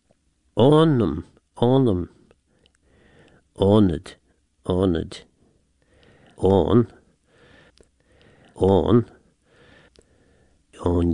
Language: English